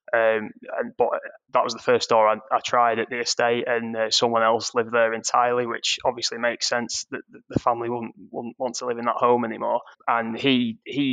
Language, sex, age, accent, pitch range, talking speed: English, male, 20-39, British, 115-125 Hz, 210 wpm